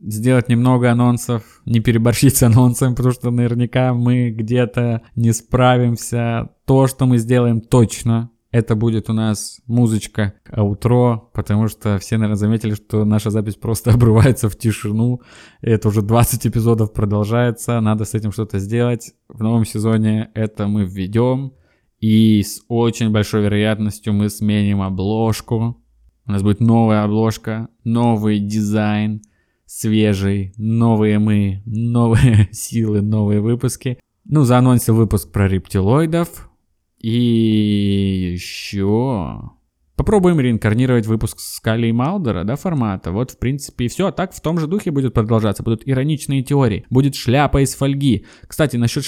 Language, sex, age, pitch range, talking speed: Russian, male, 20-39, 105-125 Hz, 140 wpm